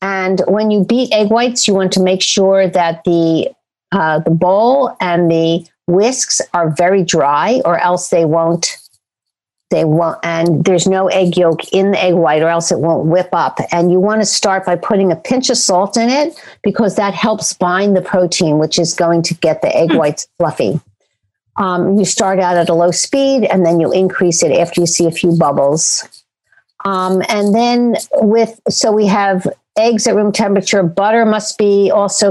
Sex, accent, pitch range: female, American, 170-205 Hz